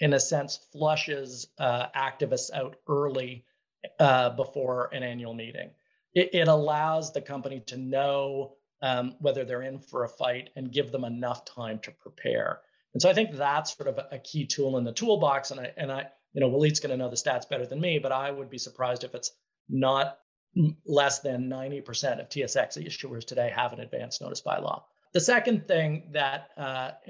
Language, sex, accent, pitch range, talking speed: English, male, American, 130-160 Hz, 195 wpm